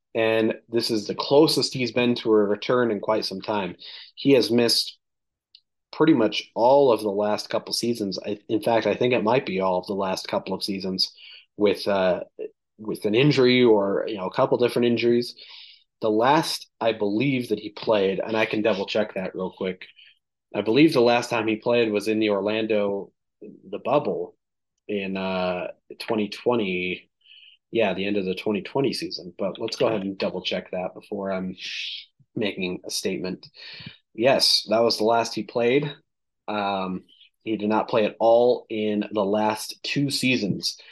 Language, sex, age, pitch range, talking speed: English, male, 30-49, 100-120 Hz, 180 wpm